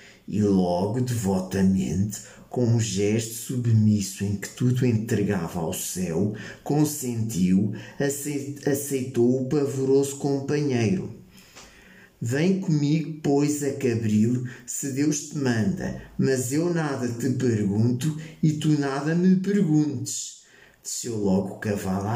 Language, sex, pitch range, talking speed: Portuguese, male, 110-145 Hz, 110 wpm